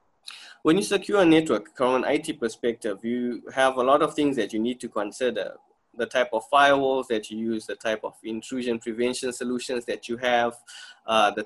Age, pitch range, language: 20-39, 110-125 Hz, English